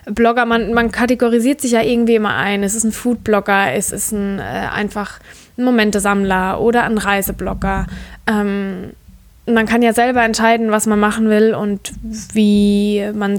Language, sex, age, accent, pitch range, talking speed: German, female, 20-39, German, 200-230 Hz, 150 wpm